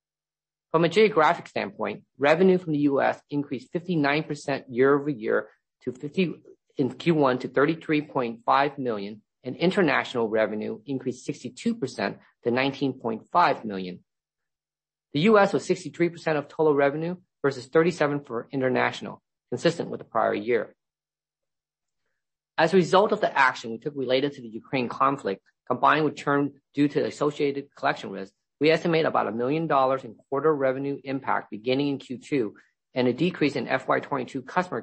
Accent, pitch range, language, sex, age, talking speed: American, 130-160 Hz, English, male, 40-59, 145 wpm